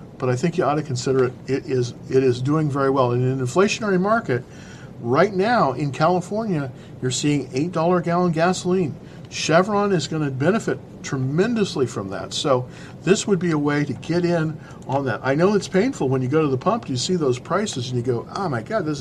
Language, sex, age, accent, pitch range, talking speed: English, male, 50-69, American, 130-180 Hz, 220 wpm